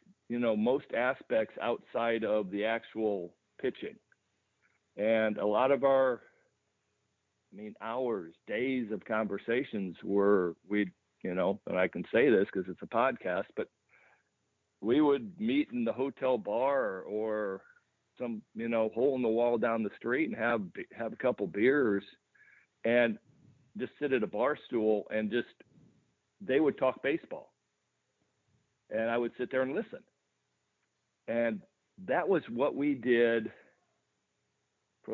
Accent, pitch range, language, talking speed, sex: American, 105-125 Hz, English, 145 wpm, male